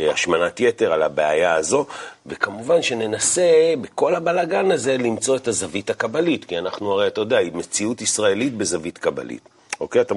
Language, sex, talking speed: Hebrew, male, 155 wpm